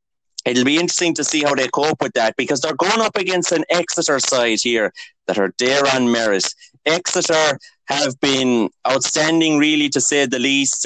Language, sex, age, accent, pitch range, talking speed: English, male, 30-49, Irish, 130-160 Hz, 180 wpm